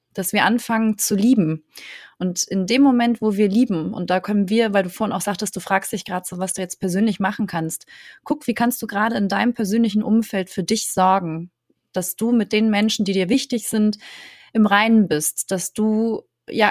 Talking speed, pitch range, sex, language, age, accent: 210 wpm, 180-215 Hz, female, German, 30-49, German